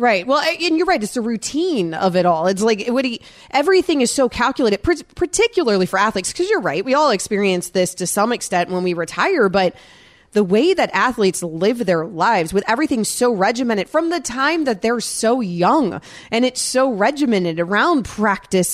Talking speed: 190 wpm